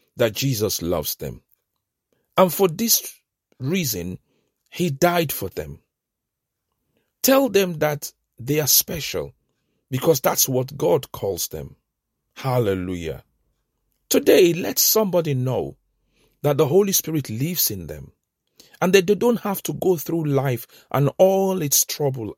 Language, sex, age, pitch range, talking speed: English, male, 50-69, 130-195 Hz, 130 wpm